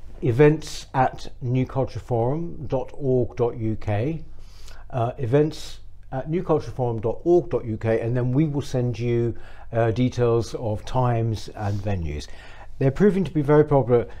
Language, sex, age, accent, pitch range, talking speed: English, male, 60-79, British, 105-135 Hz, 100 wpm